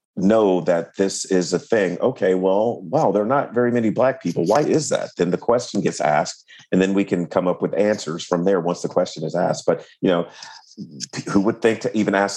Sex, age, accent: male, 40-59, American